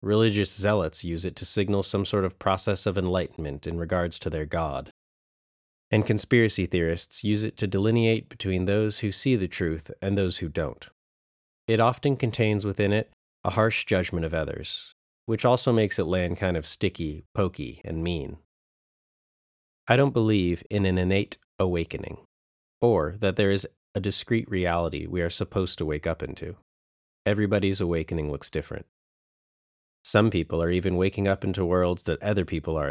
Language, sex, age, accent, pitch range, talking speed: English, male, 30-49, American, 80-105 Hz, 170 wpm